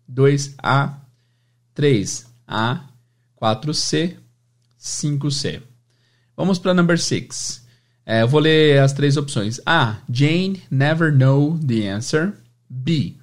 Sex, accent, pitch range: male, Brazilian, 120-150 Hz